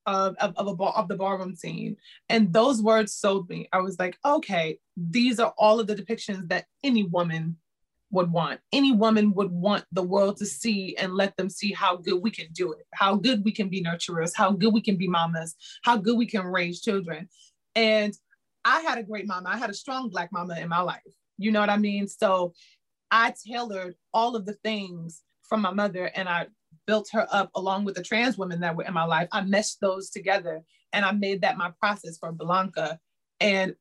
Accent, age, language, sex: American, 30-49, English, female